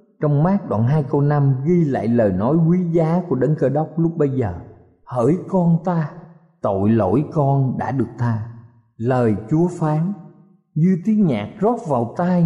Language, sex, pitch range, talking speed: Vietnamese, male, 115-175 Hz, 180 wpm